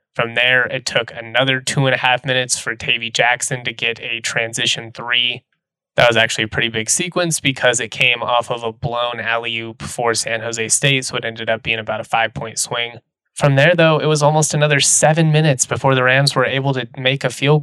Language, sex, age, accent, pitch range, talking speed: English, male, 20-39, American, 120-150 Hz, 225 wpm